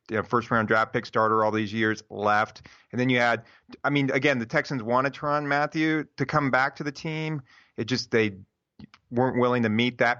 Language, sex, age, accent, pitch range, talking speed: English, male, 30-49, American, 115-140 Hz, 220 wpm